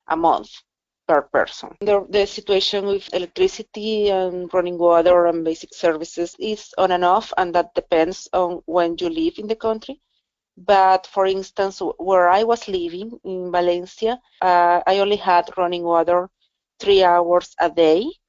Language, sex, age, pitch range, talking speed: English, female, 30-49, 170-195 Hz, 160 wpm